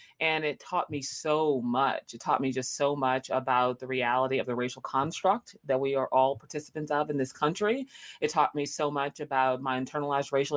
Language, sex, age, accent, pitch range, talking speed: English, female, 30-49, American, 130-150 Hz, 210 wpm